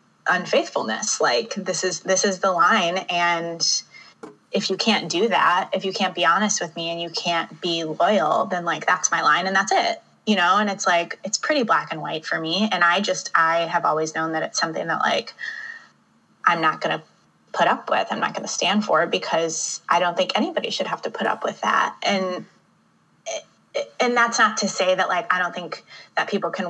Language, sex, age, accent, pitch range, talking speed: English, female, 20-39, American, 165-210 Hz, 215 wpm